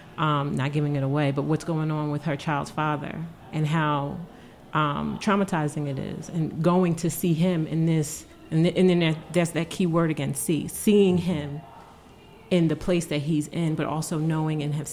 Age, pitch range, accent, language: 30-49, 150-170 Hz, American, English